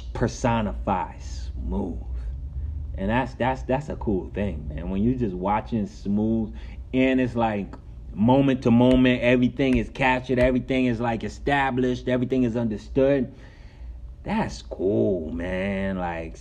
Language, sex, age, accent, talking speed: English, male, 30-49, American, 130 wpm